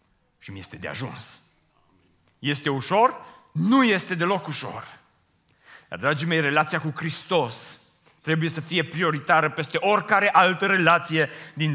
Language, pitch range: Romanian, 175-220 Hz